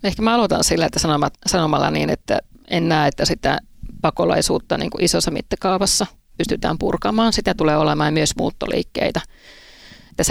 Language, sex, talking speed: Finnish, female, 140 wpm